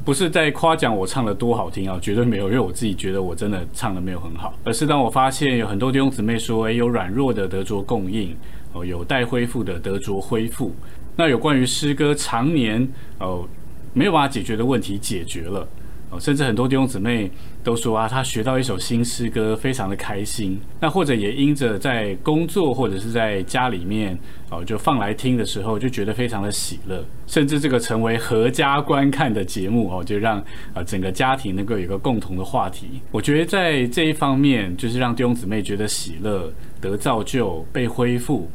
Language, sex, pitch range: Chinese, male, 100-130 Hz